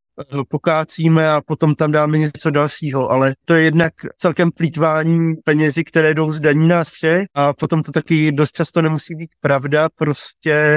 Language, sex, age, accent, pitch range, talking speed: Czech, male, 20-39, native, 140-155 Hz, 165 wpm